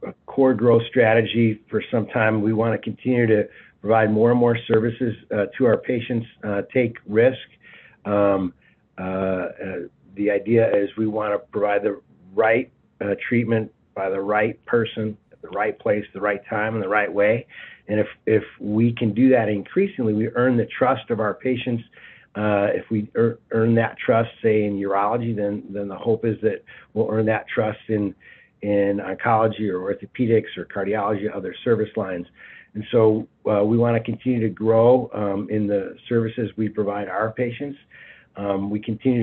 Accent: American